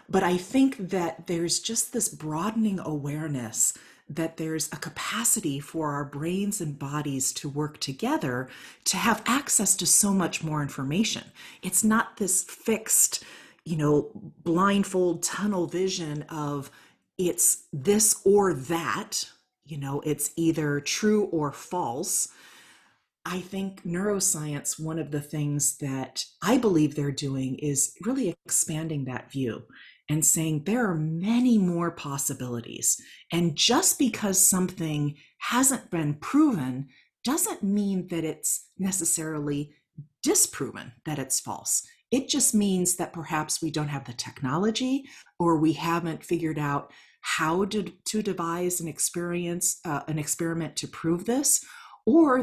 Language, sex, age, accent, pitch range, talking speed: English, female, 40-59, American, 150-200 Hz, 135 wpm